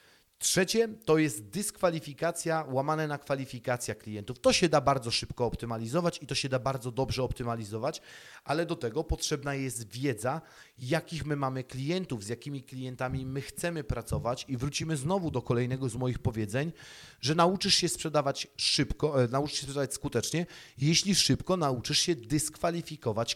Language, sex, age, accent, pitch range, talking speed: Polish, male, 30-49, native, 130-170 Hz, 150 wpm